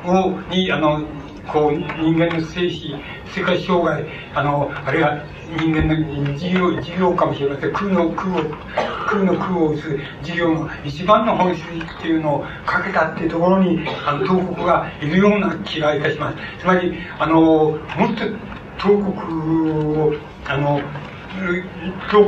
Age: 60-79